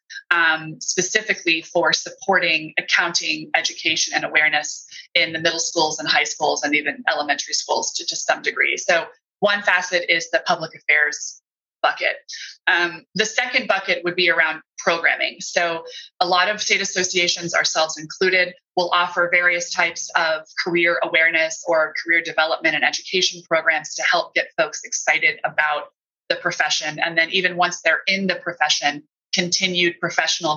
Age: 20-39